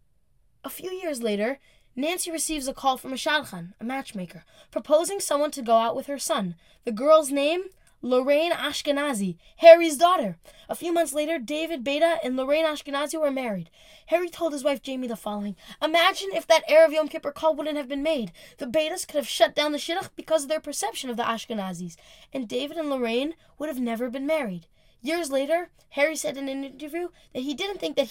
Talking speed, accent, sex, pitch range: 200 wpm, American, female, 235-320 Hz